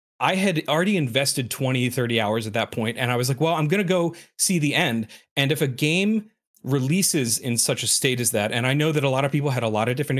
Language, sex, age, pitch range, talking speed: English, male, 30-49, 115-150 Hz, 270 wpm